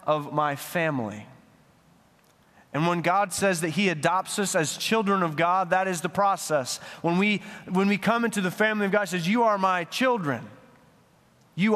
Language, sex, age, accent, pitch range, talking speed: English, male, 30-49, American, 145-205 Hz, 185 wpm